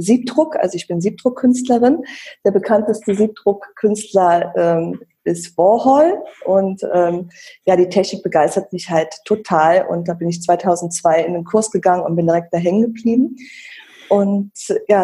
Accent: German